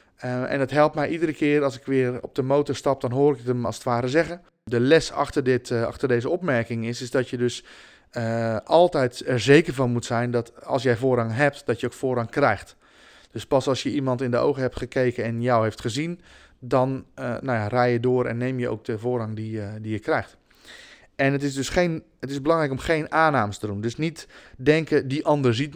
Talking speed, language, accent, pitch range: 240 wpm, Dutch, Dutch, 120-140 Hz